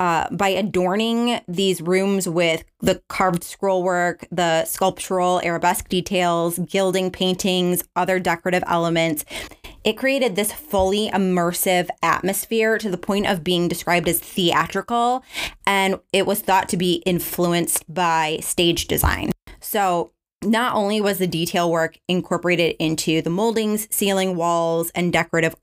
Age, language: 20-39, English